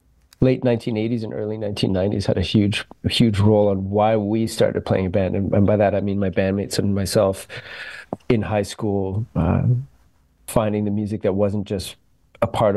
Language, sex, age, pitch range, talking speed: English, male, 40-59, 95-110 Hz, 180 wpm